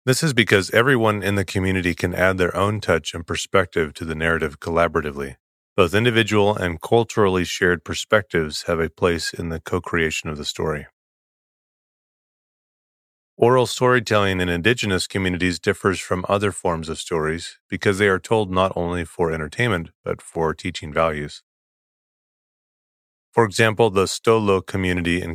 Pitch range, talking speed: 80-100 Hz, 145 wpm